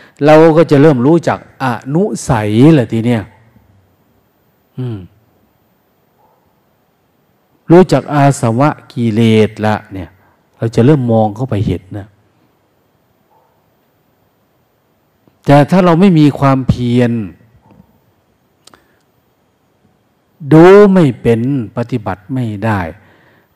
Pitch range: 115-155 Hz